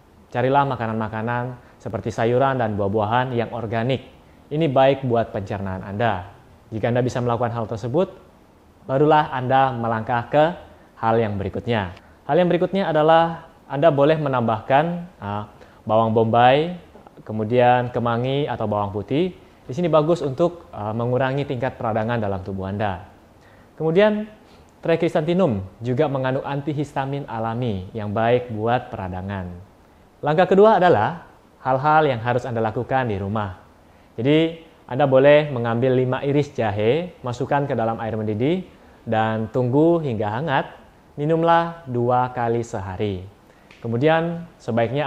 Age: 20-39